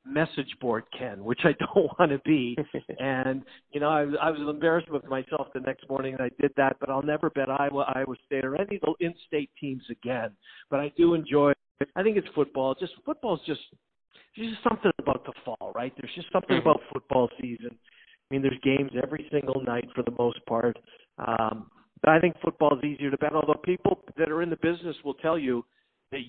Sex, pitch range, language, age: male, 125-155 Hz, English, 50-69